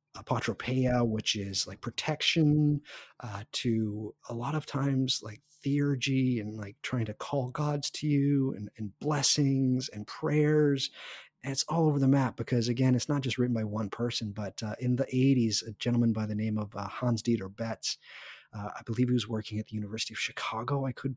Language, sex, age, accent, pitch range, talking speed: English, male, 30-49, American, 105-135 Hz, 195 wpm